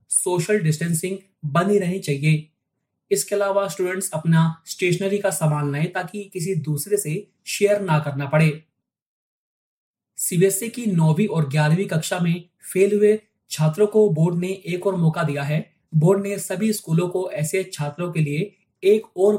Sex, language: male, Hindi